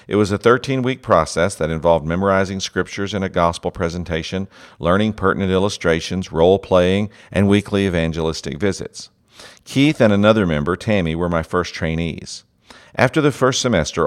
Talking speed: 145 wpm